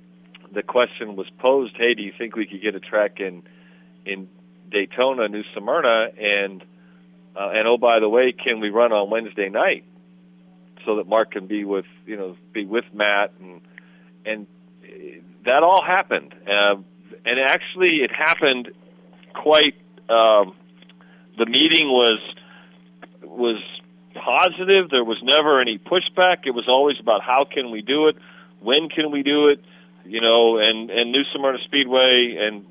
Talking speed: 160 wpm